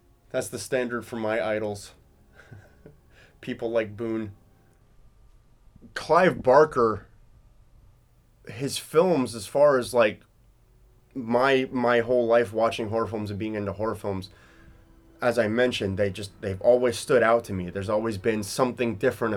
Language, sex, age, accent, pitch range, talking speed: English, male, 30-49, American, 100-120 Hz, 140 wpm